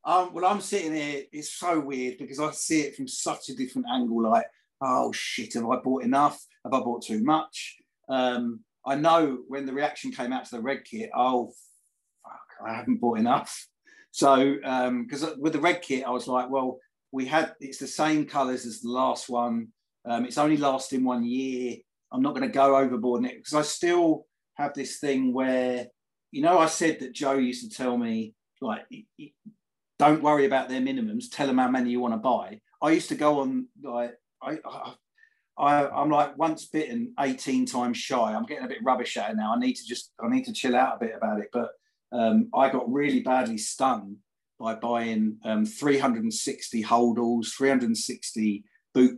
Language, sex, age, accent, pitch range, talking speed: English, male, 40-59, British, 125-165 Hz, 205 wpm